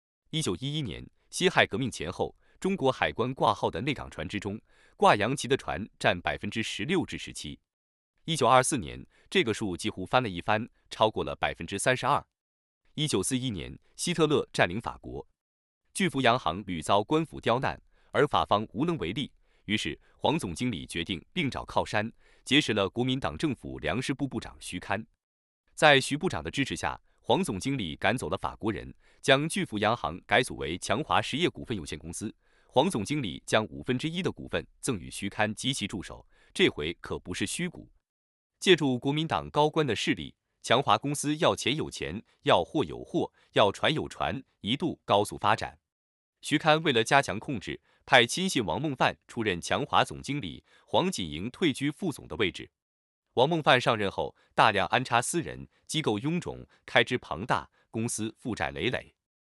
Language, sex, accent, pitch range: English, male, Chinese, 85-145 Hz